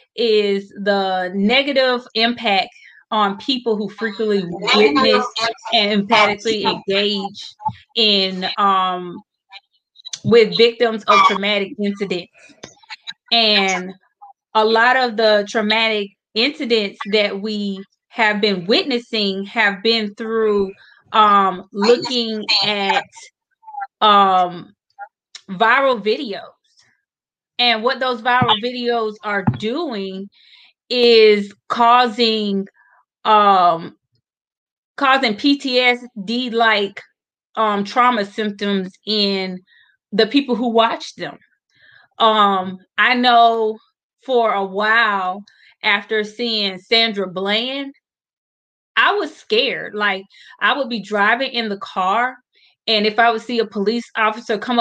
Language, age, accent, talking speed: English, 20-39, American, 100 wpm